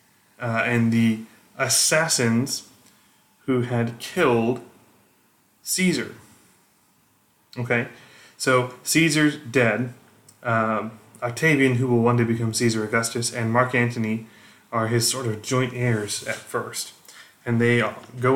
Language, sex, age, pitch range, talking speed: English, male, 20-39, 110-125 Hz, 115 wpm